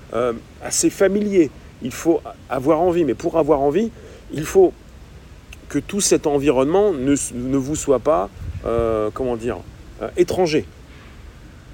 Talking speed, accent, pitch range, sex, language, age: 140 wpm, French, 105-155 Hz, male, French, 40-59